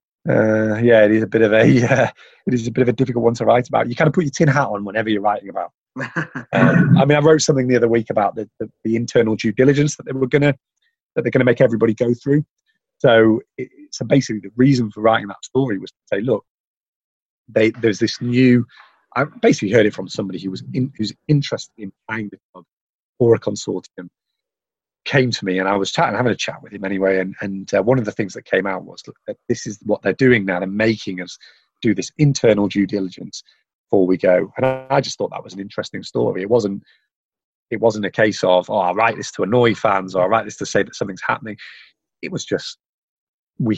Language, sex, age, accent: English, male, 30-49, British